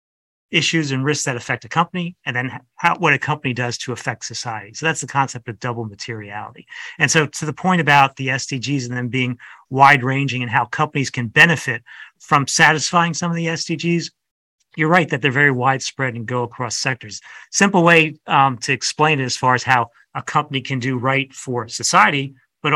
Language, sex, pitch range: English, male, 125-145 Hz